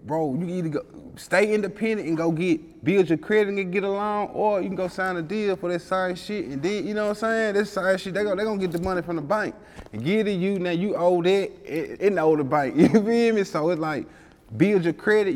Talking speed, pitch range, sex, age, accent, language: 260 wpm, 140-190 Hz, male, 20-39, American, English